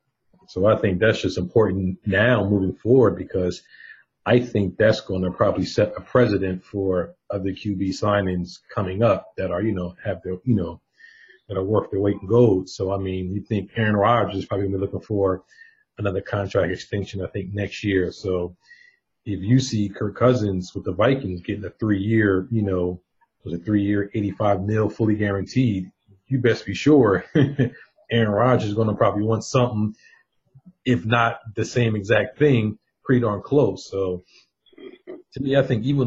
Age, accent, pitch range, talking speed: 40-59, American, 95-115 Hz, 180 wpm